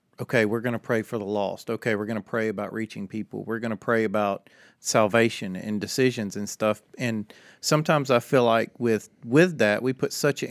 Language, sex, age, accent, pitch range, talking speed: English, male, 40-59, American, 115-140 Hz, 215 wpm